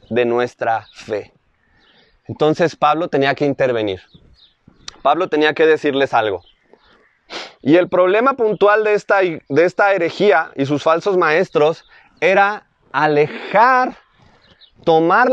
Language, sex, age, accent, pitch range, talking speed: Spanish, male, 30-49, Mexican, 140-205 Hz, 115 wpm